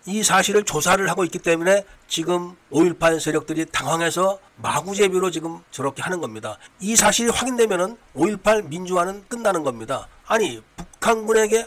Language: Korean